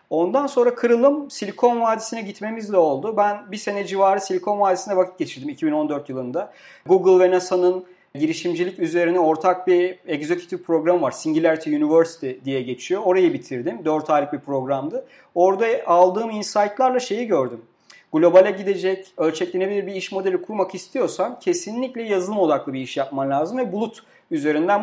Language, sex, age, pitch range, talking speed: Turkish, male, 40-59, 160-205 Hz, 145 wpm